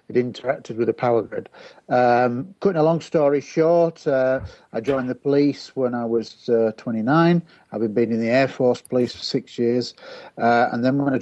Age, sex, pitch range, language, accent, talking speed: 50-69, male, 115-135 Hz, English, British, 200 wpm